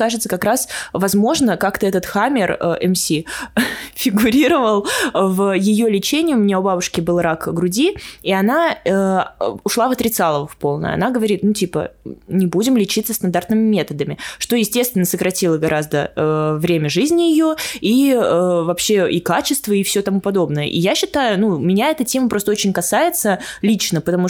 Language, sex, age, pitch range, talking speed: Russian, female, 20-39, 175-220 Hz, 160 wpm